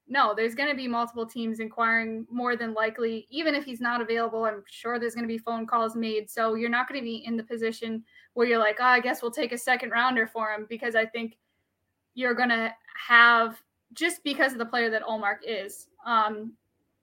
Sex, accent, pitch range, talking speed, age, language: female, American, 220-245 Hz, 220 wpm, 10-29, English